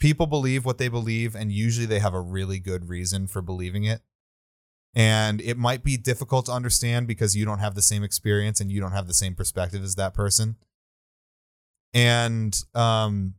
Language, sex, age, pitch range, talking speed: English, male, 20-39, 95-115 Hz, 190 wpm